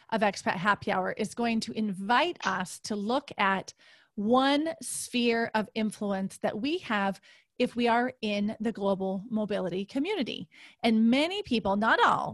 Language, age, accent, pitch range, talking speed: English, 30-49, American, 205-245 Hz, 155 wpm